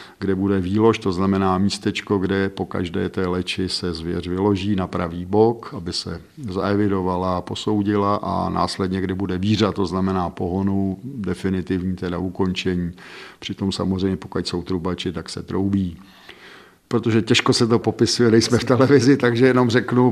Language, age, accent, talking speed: Czech, 50-69, native, 150 wpm